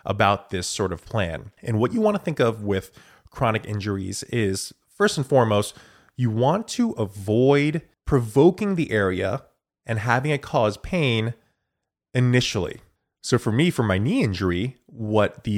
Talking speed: 160 wpm